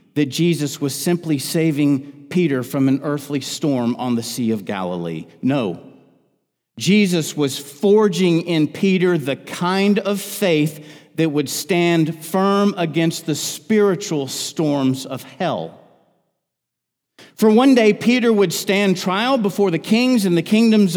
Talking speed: 135 wpm